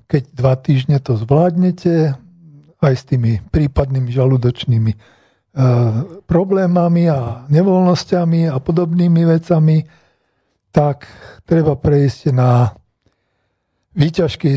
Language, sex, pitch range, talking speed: Slovak, male, 125-160 Hz, 90 wpm